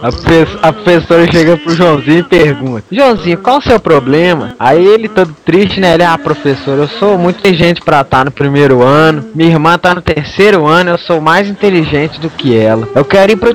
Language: Portuguese